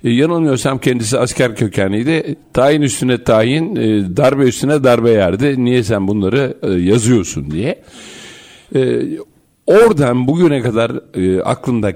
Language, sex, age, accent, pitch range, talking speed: Turkish, male, 60-79, native, 100-140 Hz, 100 wpm